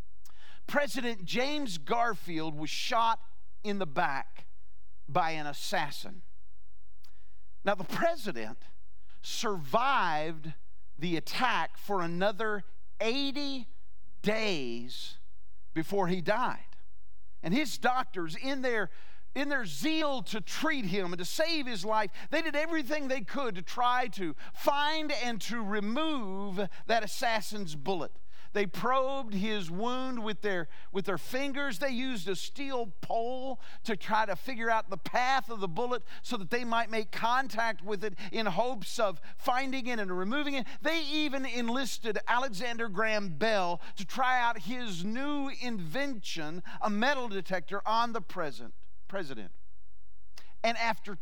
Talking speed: 135 wpm